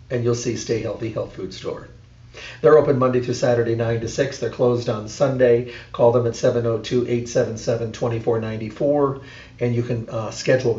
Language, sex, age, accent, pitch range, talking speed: English, male, 40-59, American, 115-130 Hz, 155 wpm